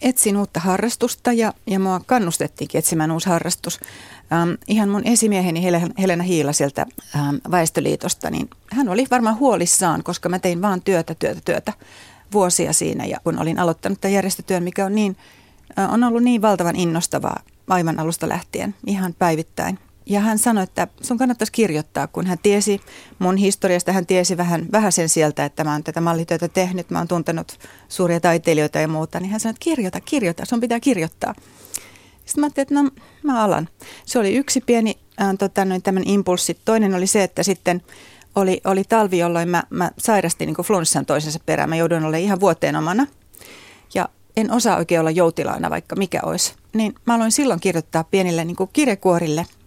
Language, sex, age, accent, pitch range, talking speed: Finnish, female, 30-49, native, 170-215 Hz, 170 wpm